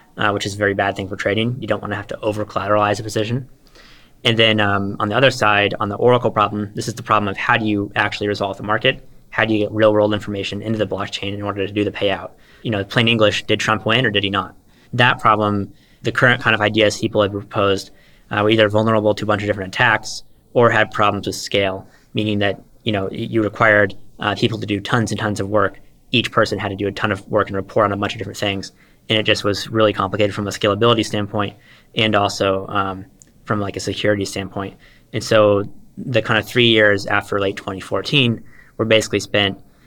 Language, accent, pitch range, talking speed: English, American, 100-110 Hz, 235 wpm